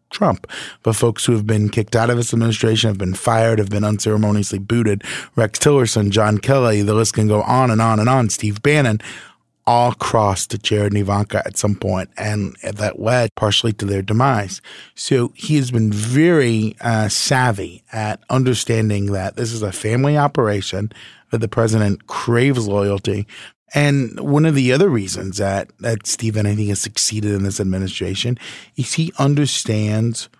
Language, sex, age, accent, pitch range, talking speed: English, male, 30-49, American, 105-120 Hz, 170 wpm